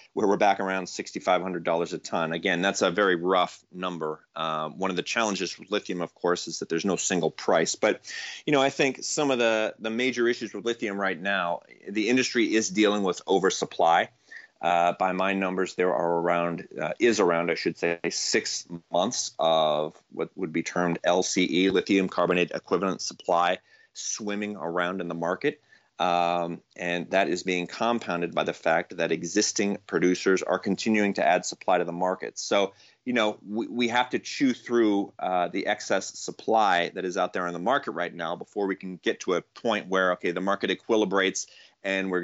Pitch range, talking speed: 90-105 Hz, 190 wpm